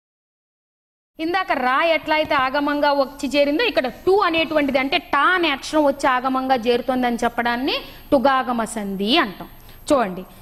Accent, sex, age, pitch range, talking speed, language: native, female, 30-49, 220-310 Hz, 120 wpm, Telugu